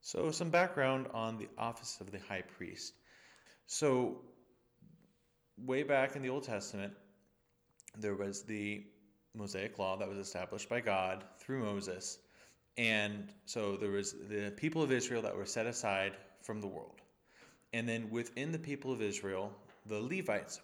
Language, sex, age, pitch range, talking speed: English, male, 20-39, 100-125 Hz, 155 wpm